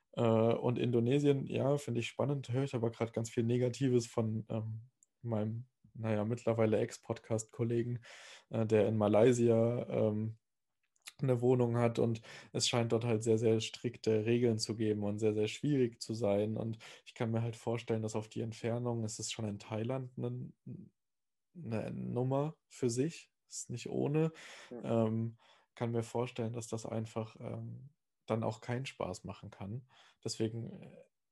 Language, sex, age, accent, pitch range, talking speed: German, male, 20-39, German, 110-125 Hz, 155 wpm